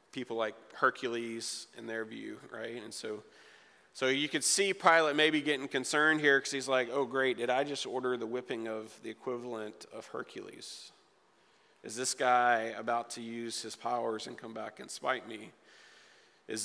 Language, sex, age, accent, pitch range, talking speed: English, male, 40-59, American, 120-150 Hz, 175 wpm